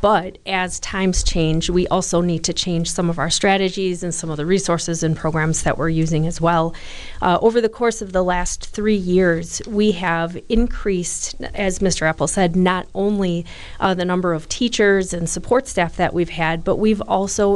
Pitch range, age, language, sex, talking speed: 170-200 Hz, 40-59, English, female, 195 wpm